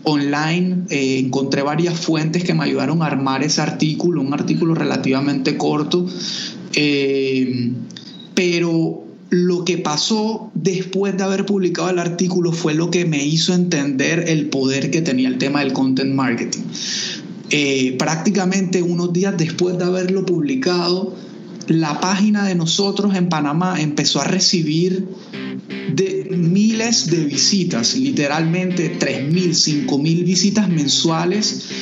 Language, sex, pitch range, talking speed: Spanish, male, 145-185 Hz, 130 wpm